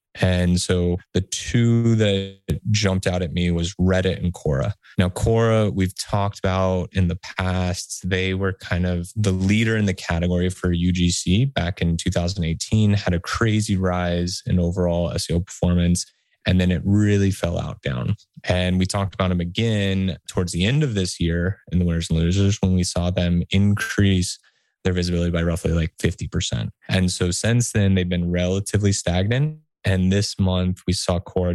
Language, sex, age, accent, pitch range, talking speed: English, male, 20-39, American, 90-100 Hz, 175 wpm